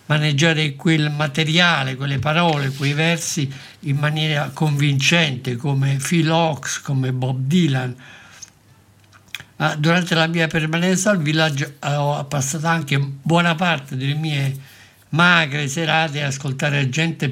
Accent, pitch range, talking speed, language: native, 135-160 Hz, 120 wpm, Italian